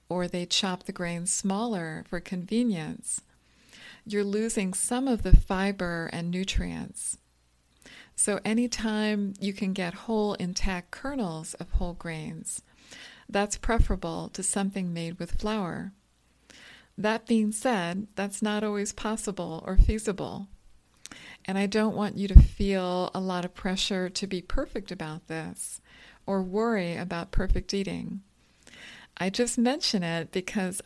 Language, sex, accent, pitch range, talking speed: English, female, American, 175-210 Hz, 135 wpm